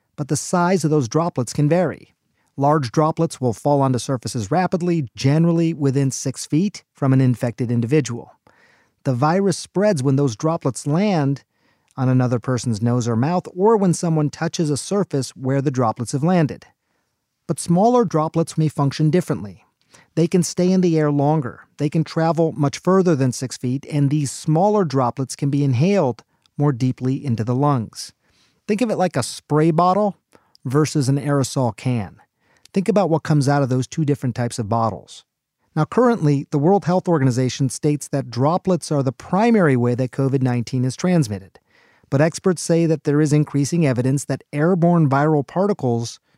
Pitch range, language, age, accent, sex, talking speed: 130-165 Hz, English, 40-59, American, male, 170 wpm